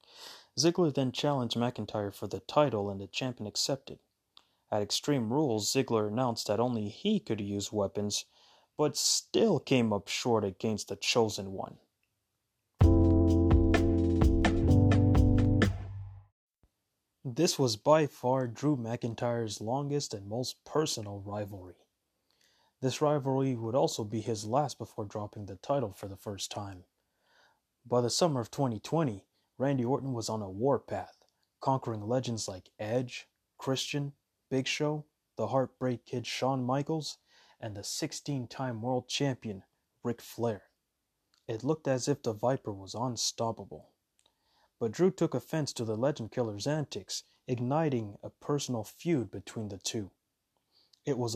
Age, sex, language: 20-39, male, English